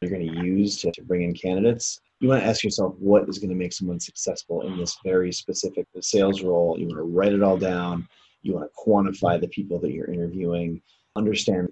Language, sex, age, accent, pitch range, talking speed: English, male, 30-49, American, 90-110 Hz, 200 wpm